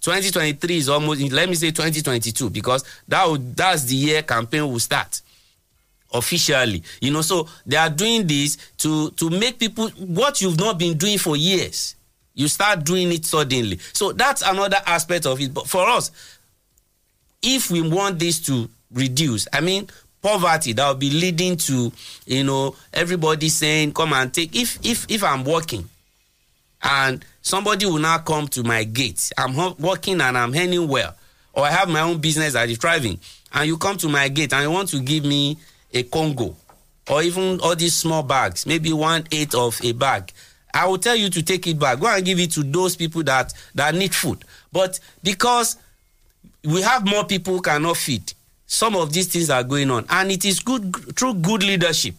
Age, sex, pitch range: 50-69, male, 130-180 Hz